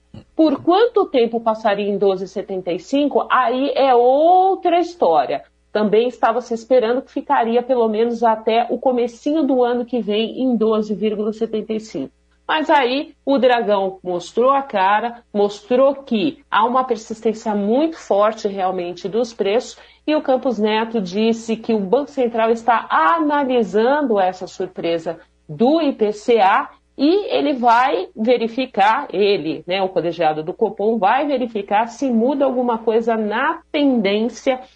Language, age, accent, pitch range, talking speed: Portuguese, 50-69, Brazilian, 200-255 Hz, 135 wpm